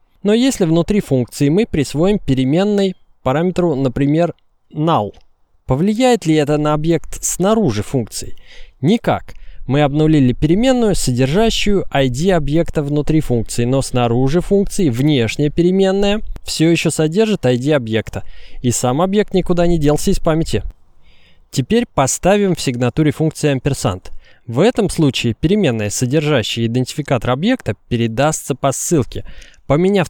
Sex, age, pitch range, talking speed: male, 20-39, 125-180 Hz, 120 wpm